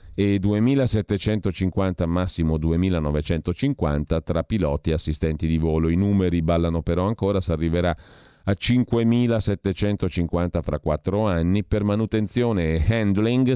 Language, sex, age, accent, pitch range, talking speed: Italian, male, 40-59, native, 80-100 Hz, 115 wpm